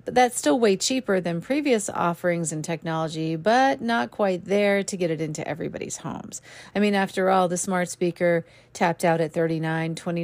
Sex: female